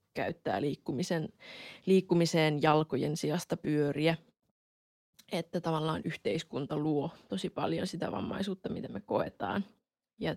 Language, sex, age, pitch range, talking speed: Finnish, female, 20-39, 150-175 Hz, 105 wpm